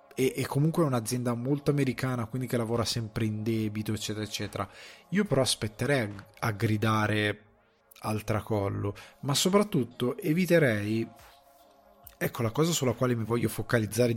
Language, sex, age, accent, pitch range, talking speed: Italian, male, 20-39, native, 105-135 Hz, 135 wpm